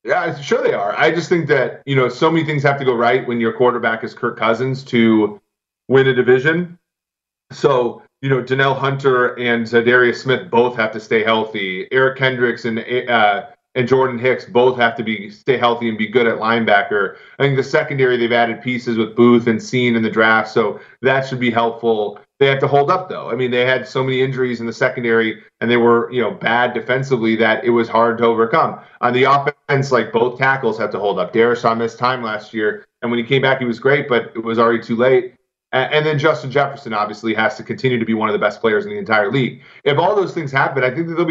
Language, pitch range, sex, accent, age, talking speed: English, 115-135 Hz, male, American, 30-49, 240 wpm